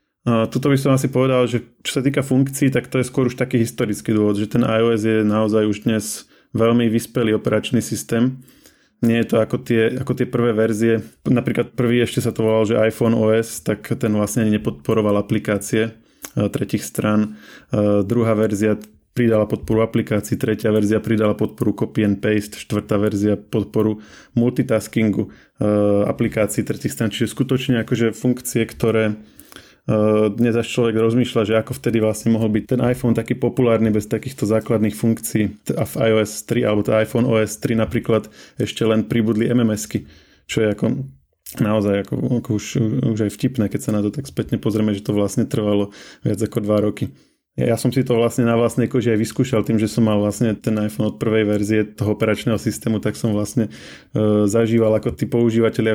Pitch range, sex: 105-120 Hz, male